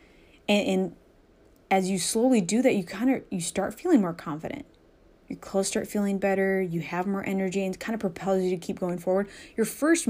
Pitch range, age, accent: 185-215 Hz, 20-39, American